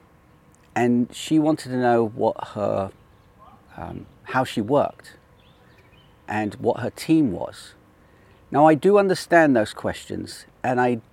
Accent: British